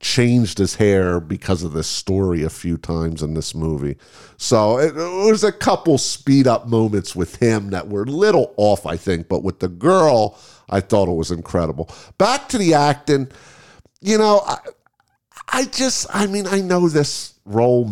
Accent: American